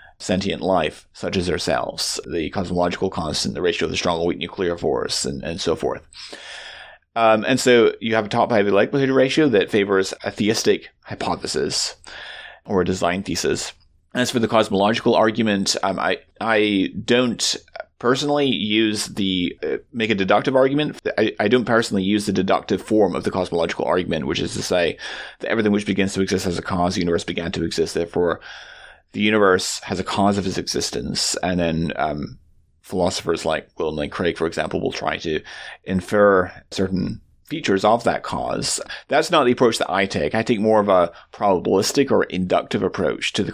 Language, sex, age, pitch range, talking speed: English, male, 30-49, 95-115 Hz, 185 wpm